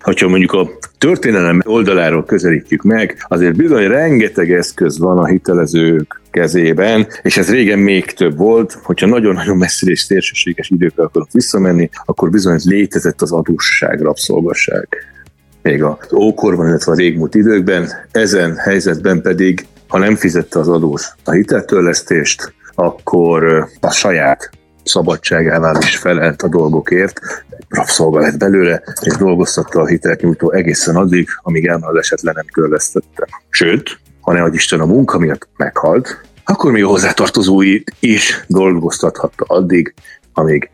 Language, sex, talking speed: Hungarian, male, 130 wpm